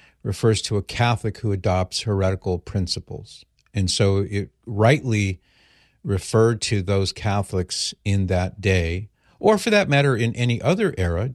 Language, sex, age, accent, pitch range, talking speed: English, male, 50-69, American, 95-115 Hz, 150 wpm